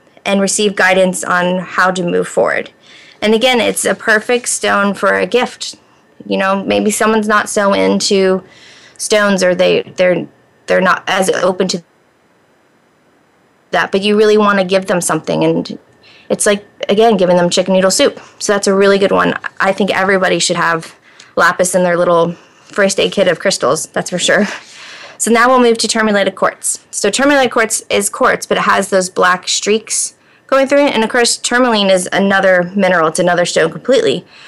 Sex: female